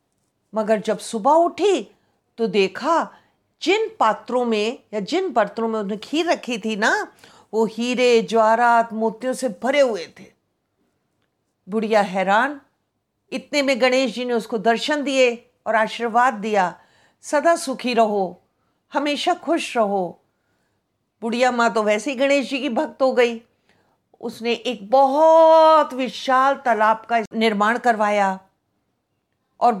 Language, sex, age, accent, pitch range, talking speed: Hindi, female, 50-69, native, 220-280 Hz, 130 wpm